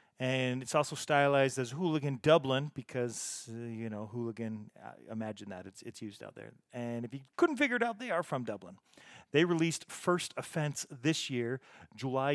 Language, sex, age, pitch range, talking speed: English, male, 40-59, 120-155 Hz, 175 wpm